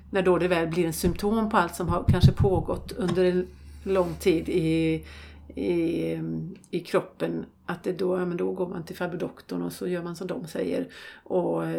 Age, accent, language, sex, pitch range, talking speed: 40-59, native, Swedish, female, 160-190 Hz, 205 wpm